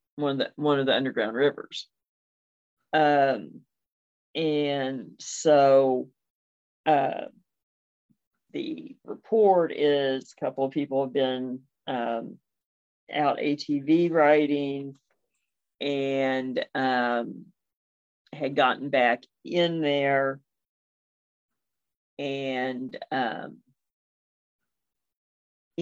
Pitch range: 125-155 Hz